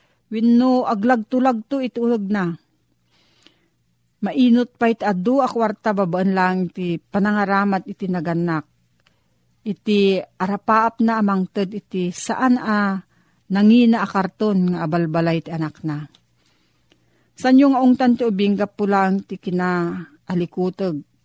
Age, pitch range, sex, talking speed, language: 50-69, 165-210 Hz, female, 115 wpm, Filipino